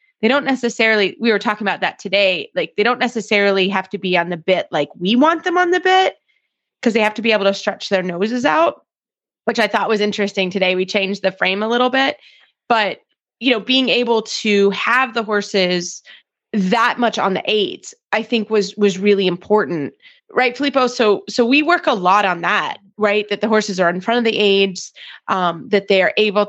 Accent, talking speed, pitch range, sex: American, 215 wpm, 190-235 Hz, female